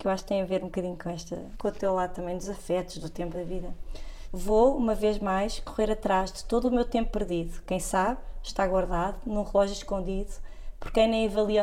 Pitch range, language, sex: 195-225 Hz, Portuguese, female